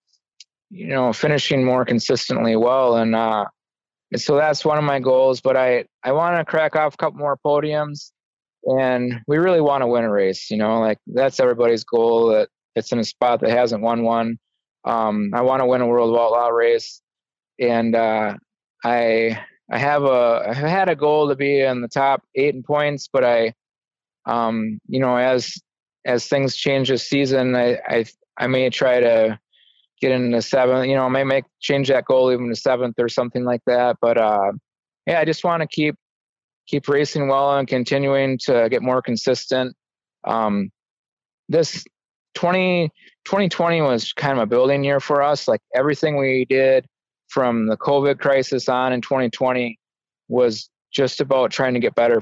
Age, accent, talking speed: 20-39, American, 180 wpm